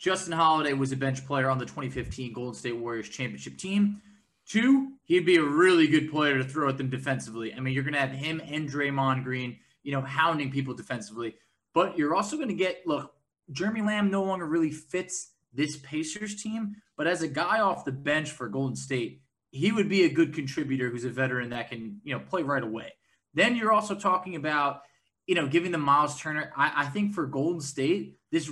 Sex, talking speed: male, 215 wpm